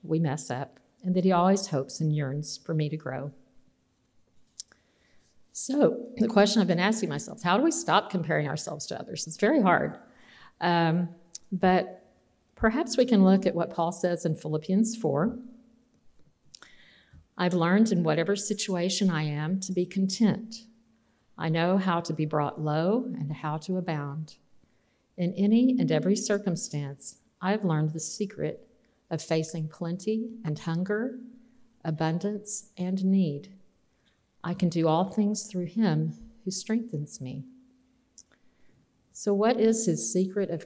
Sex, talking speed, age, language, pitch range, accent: female, 145 wpm, 50-69, English, 160-210 Hz, American